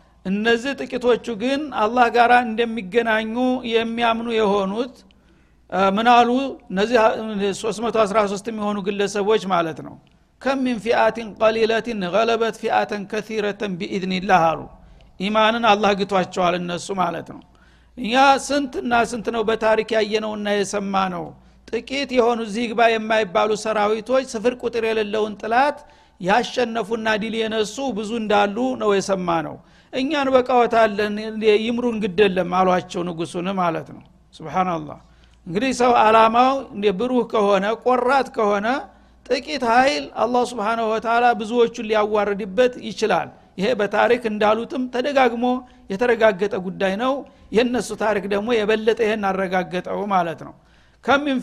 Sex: male